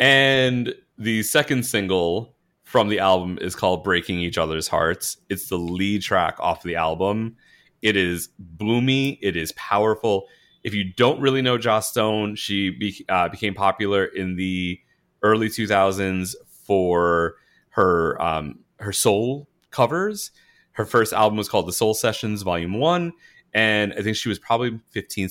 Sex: male